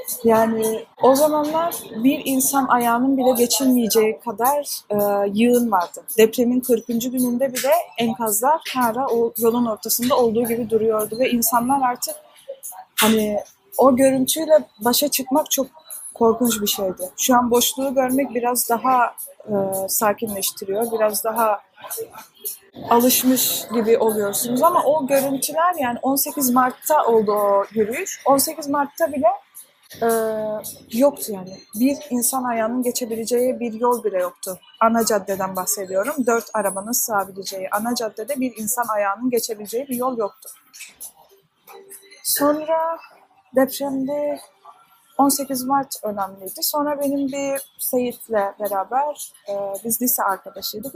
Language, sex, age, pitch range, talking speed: Turkish, female, 30-49, 215-275 Hz, 120 wpm